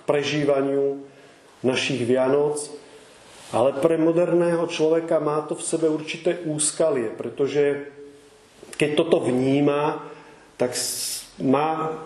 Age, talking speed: 40-59, 90 wpm